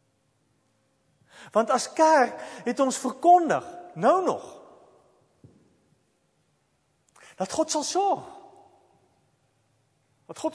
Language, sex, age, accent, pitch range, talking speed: English, male, 50-69, Dutch, 165-275 Hz, 80 wpm